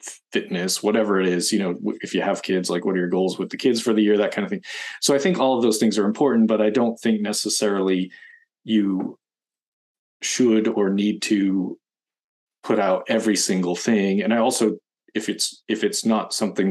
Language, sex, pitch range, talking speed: English, male, 100-115 Hz, 210 wpm